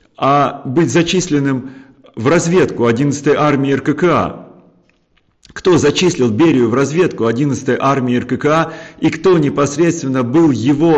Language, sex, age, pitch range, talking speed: Russian, male, 40-59, 130-160 Hz, 115 wpm